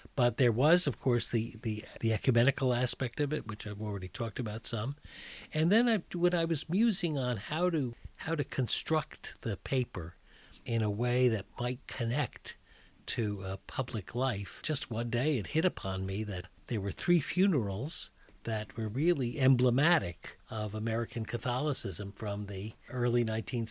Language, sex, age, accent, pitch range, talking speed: English, male, 50-69, American, 100-135 Hz, 155 wpm